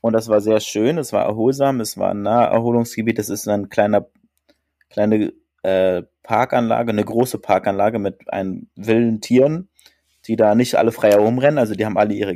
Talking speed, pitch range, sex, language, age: 185 wpm, 105-135 Hz, male, German, 30-49